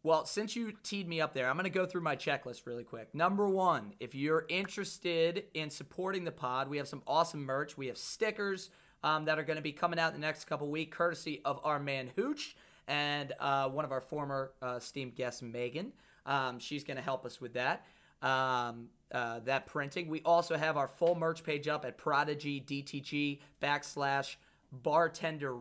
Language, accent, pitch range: English, American, 135-175 Hz